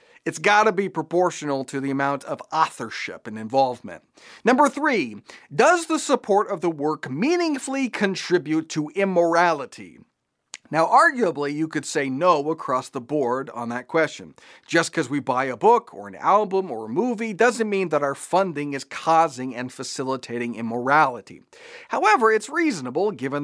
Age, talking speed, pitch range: 40-59, 160 wpm, 140-215 Hz